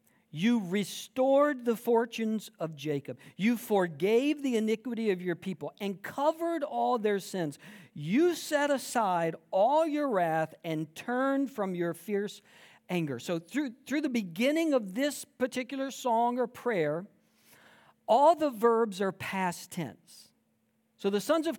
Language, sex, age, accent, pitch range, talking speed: English, male, 50-69, American, 195-260 Hz, 140 wpm